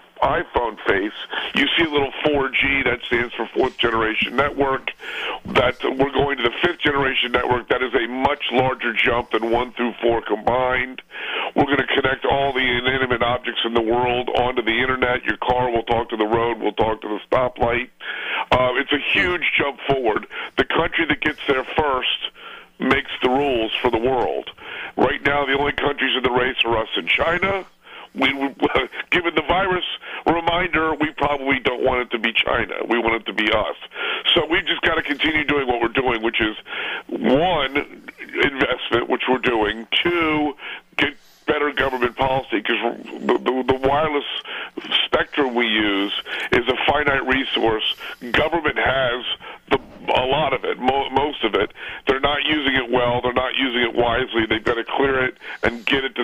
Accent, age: American, 50-69